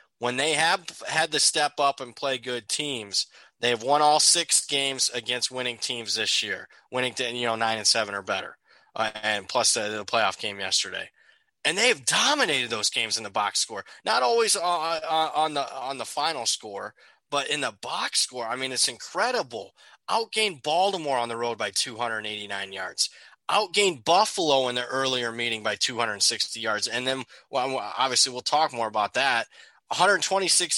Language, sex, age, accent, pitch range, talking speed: English, male, 20-39, American, 120-160 Hz, 195 wpm